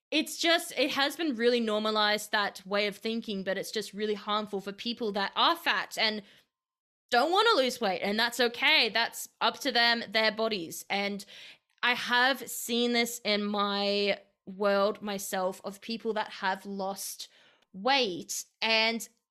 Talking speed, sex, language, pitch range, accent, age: 160 wpm, female, English, 195-240 Hz, Australian, 20-39